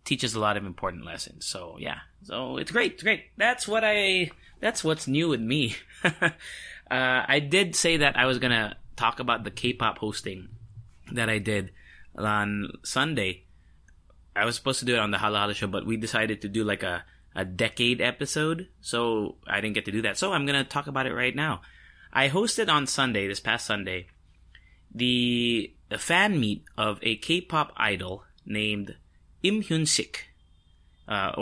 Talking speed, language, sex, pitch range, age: 185 wpm, English, male, 95-130 Hz, 20-39